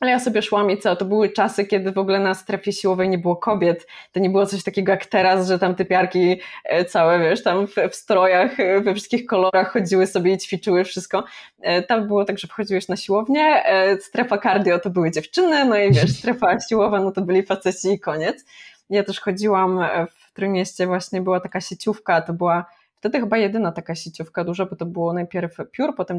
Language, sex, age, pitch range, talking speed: Polish, female, 20-39, 185-220 Hz, 200 wpm